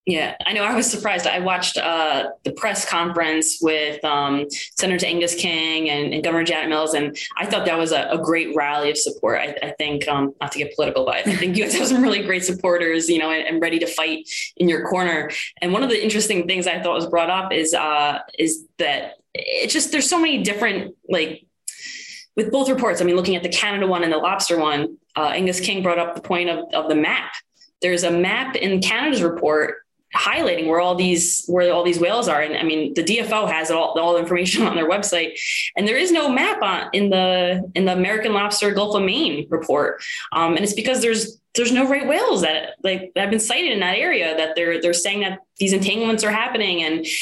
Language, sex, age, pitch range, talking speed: English, female, 20-39, 165-210 Hz, 225 wpm